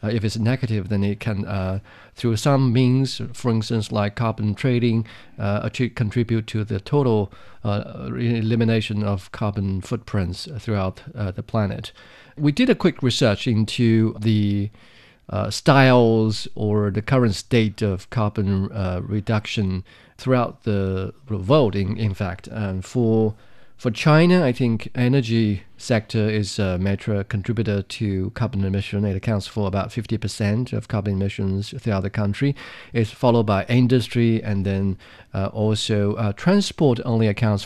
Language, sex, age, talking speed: English, male, 40-59, 145 wpm